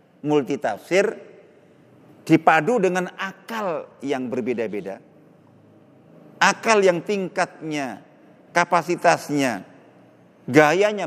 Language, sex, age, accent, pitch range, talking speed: Indonesian, male, 40-59, native, 145-195 Hz, 60 wpm